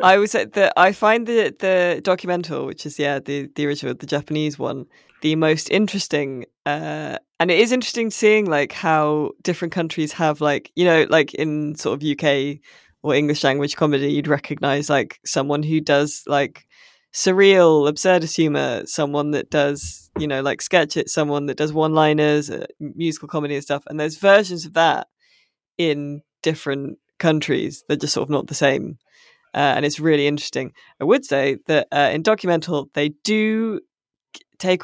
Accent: British